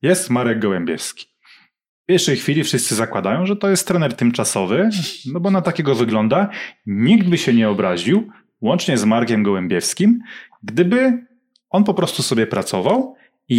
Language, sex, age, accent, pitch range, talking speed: Polish, male, 30-49, native, 120-185 Hz, 150 wpm